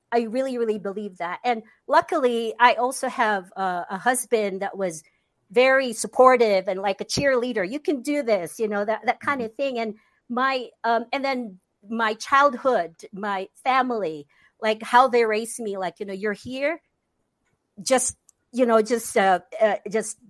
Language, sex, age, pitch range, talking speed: English, female, 50-69, 210-260 Hz, 170 wpm